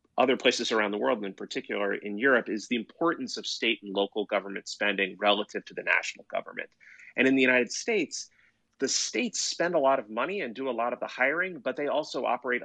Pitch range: 105-125 Hz